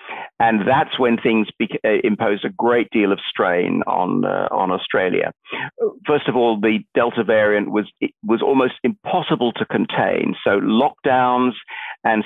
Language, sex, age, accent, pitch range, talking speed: Danish, male, 50-69, British, 110-135 Hz, 150 wpm